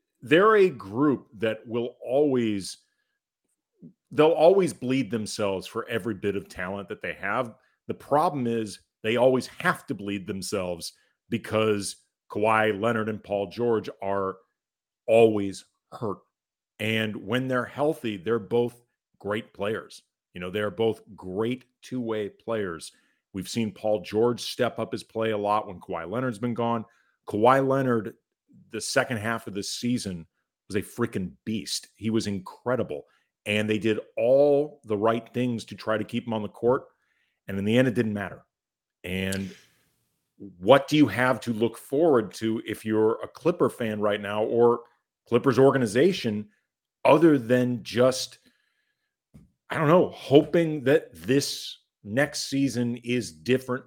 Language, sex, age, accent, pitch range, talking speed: English, male, 40-59, American, 105-125 Hz, 150 wpm